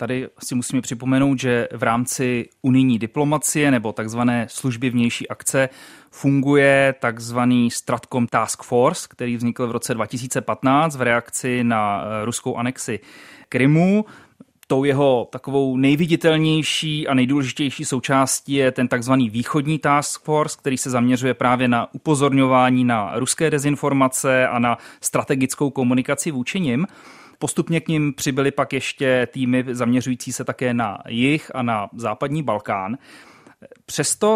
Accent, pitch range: native, 125-150 Hz